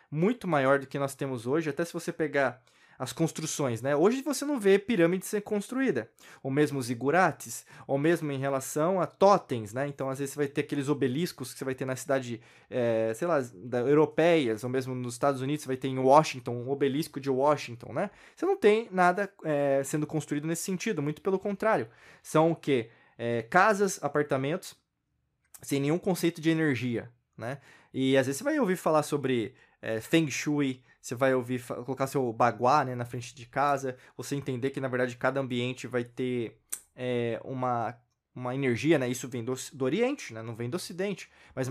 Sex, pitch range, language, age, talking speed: male, 130-165 Hz, Portuguese, 20-39, 195 wpm